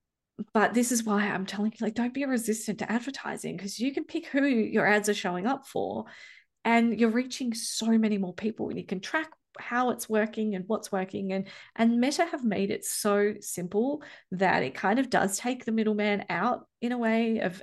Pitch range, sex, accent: 190-230 Hz, female, Australian